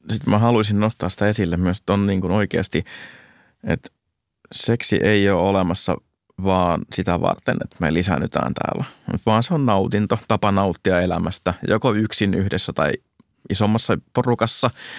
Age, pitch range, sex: 30-49, 90-110 Hz, male